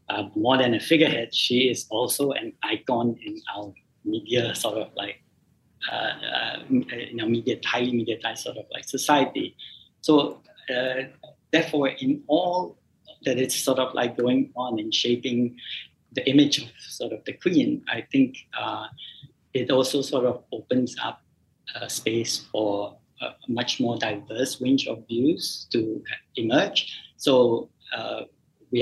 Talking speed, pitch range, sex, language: 150 wpm, 120-155 Hz, male, English